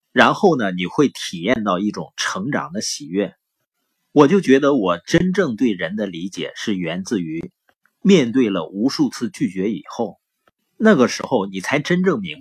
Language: Chinese